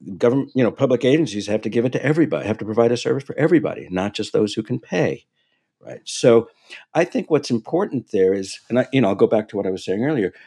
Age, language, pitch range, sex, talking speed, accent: 60-79, English, 95-135 Hz, male, 260 wpm, American